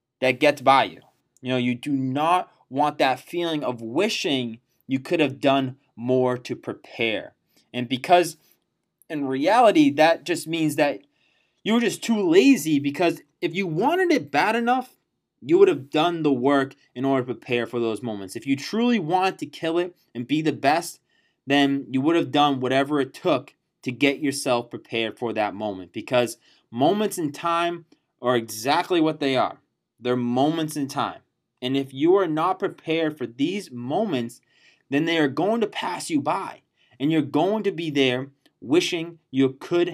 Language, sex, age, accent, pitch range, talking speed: English, male, 20-39, American, 130-170 Hz, 180 wpm